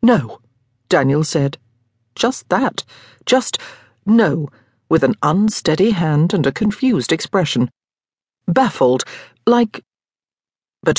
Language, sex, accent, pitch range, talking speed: English, female, British, 140-225 Hz, 100 wpm